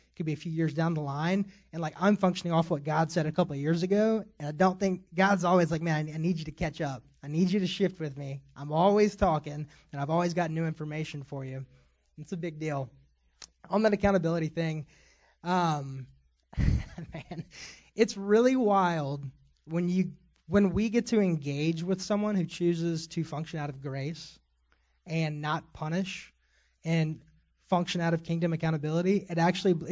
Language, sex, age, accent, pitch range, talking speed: English, male, 20-39, American, 145-175 Hz, 185 wpm